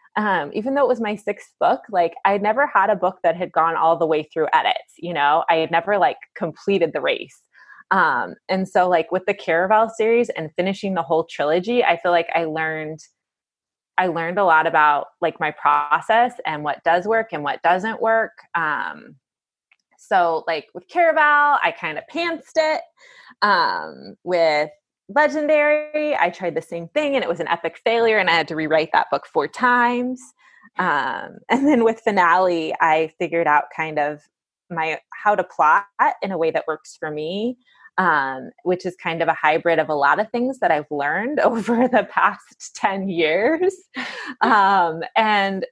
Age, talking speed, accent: 20-39, 185 wpm, American